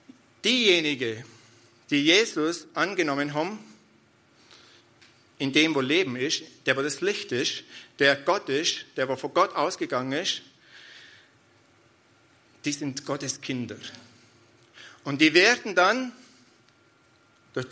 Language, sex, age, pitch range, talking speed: German, male, 50-69, 135-185 Hz, 110 wpm